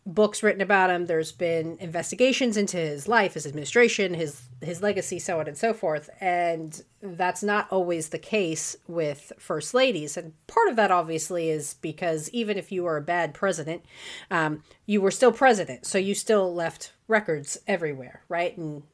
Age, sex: 30-49, female